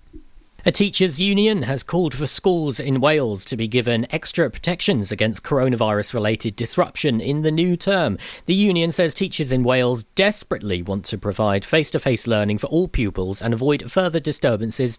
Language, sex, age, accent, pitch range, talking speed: English, male, 40-59, British, 110-150 Hz, 160 wpm